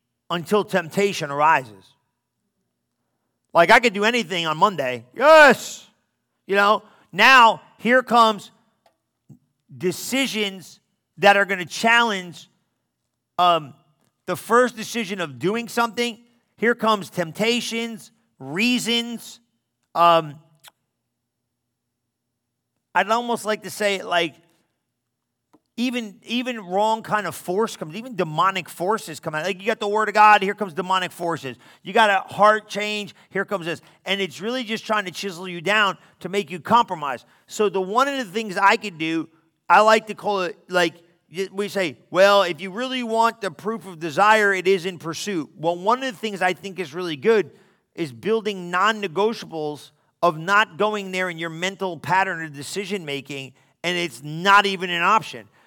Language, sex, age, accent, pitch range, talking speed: English, male, 40-59, American, 170-220 Hz, 155 wpm